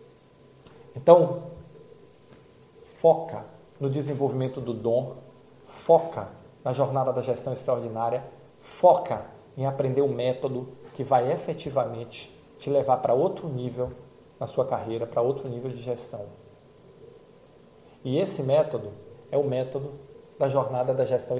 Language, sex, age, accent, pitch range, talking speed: Portuguese, male, 40-59, Brazilian, 125-165 Hz, 120 wpm